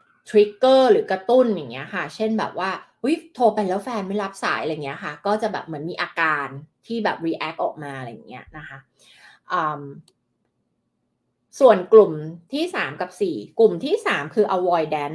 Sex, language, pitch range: female, Thai, 170-225 Hz